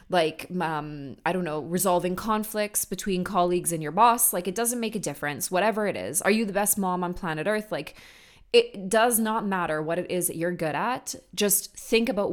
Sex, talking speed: female, 215 wpm